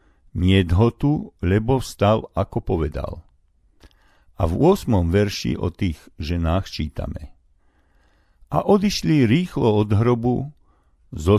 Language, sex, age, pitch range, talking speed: Slovak, male, 50-69, 80-110 Hz, 100 wpm